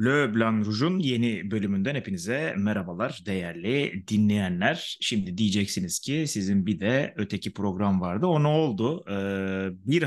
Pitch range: 105-130 Hz